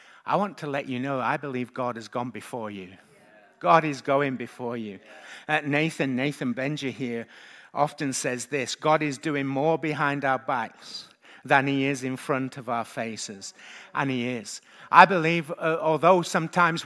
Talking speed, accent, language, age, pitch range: 175 wpm, British, English, 50-69, 135-160 Hz